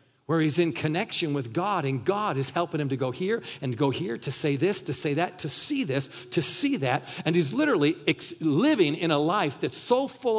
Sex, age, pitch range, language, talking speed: male, 50-69, 135-180 Hz, English, 225 wpm